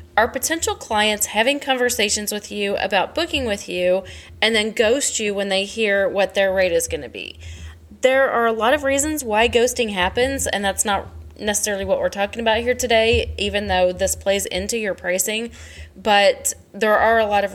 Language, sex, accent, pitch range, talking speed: English, female, American, 185-240 Hz, 195 wpm